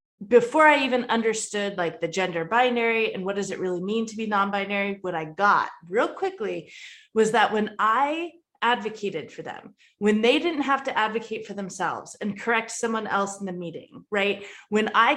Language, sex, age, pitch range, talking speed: English, female, 20-39, 195-255 Hz, 190 wpm